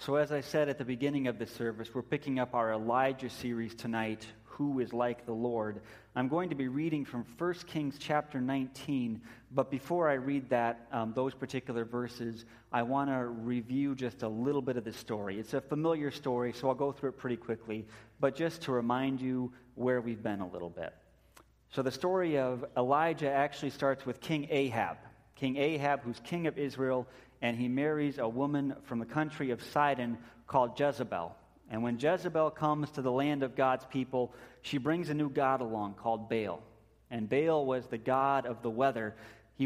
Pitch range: 115-140 Hz